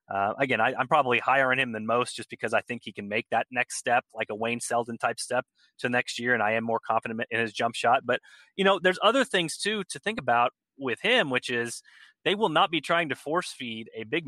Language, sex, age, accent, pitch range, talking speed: English, male, 30-49, American, 115-135 Hz, 260 wpm